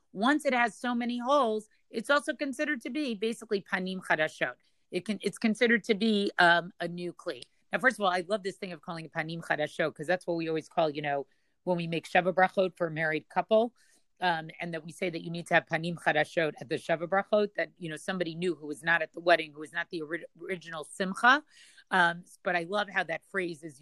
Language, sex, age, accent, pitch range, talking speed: English, female, 40-59, American, 170-215 Hz, 235 wpm